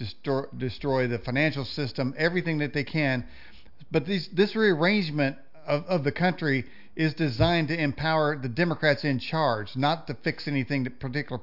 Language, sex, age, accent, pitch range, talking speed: English, male, 50-69, American, 145-180 Hz, 165 wpm